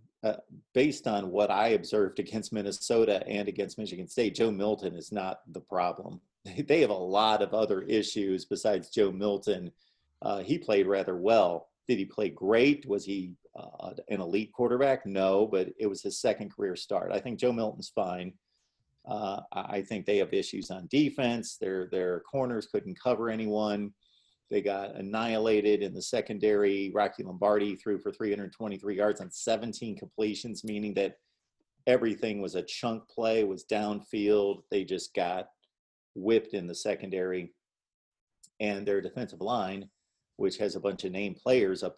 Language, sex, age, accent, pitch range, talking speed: English, male, 40-59, American, 95-115 Hz, 160 wpm